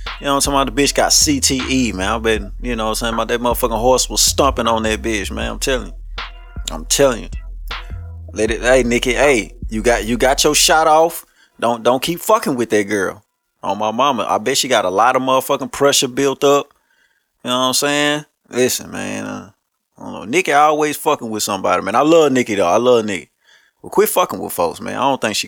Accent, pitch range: American, 110-155 Hz